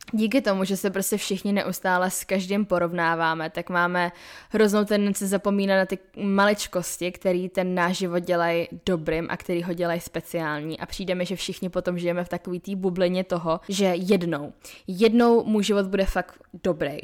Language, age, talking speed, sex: Czech, 10-29, 170 wpm, female